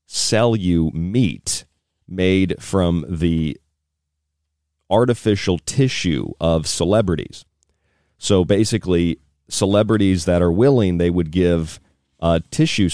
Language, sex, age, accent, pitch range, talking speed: English, male, 40-59, American, 80-100 Hz, 95 wpm